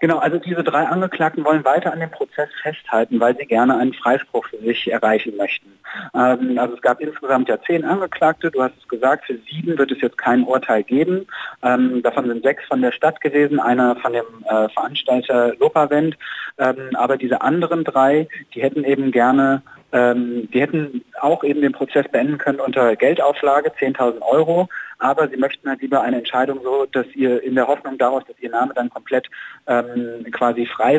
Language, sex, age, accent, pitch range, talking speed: German, male, 30-49, German, 125-155 Hz, 190 wpm